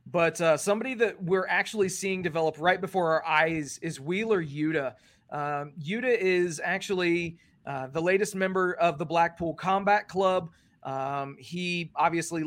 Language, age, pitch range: English, 30-49, 165-205 Hz